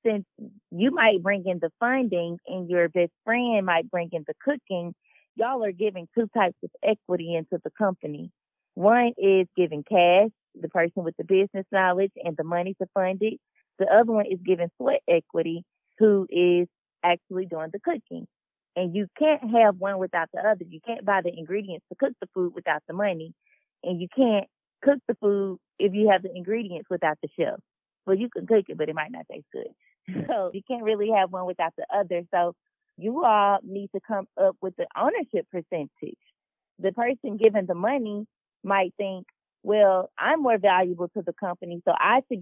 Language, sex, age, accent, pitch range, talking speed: English, female, 20-39, American, 180-220 Hz, 195 wpm